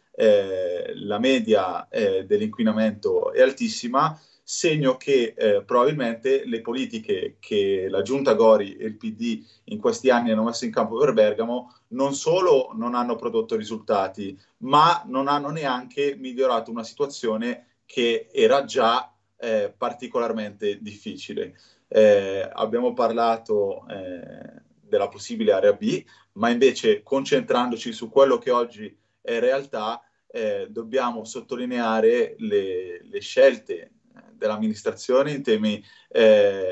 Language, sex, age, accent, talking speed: Italian, male, 30-49, native, 125 wpm